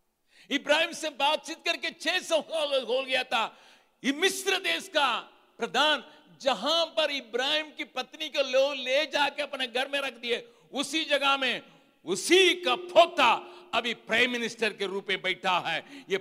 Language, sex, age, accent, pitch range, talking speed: Hindi, male, 60-79, native, 195-295 Hz, 105 wpm